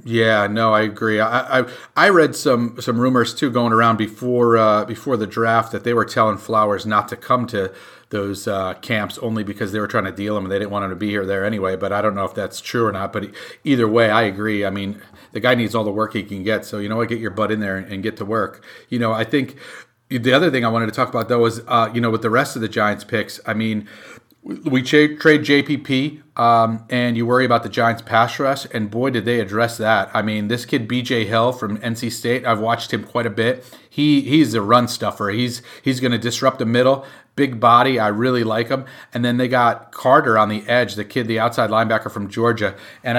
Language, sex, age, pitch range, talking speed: English, male, 40-59, 110-125 Hz, 245 wpm